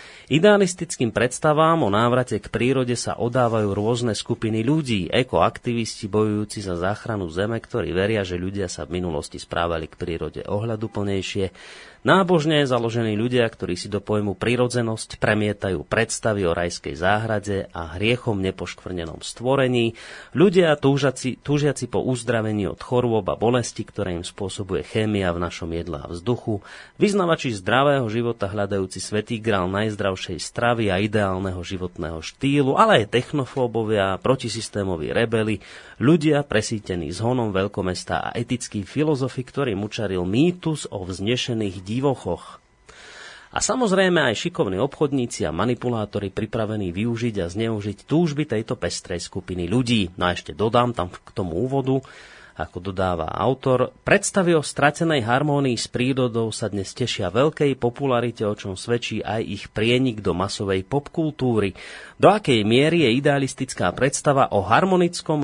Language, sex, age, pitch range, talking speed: Slovak, male, 30-49, 100-130 Hz, 130 wpm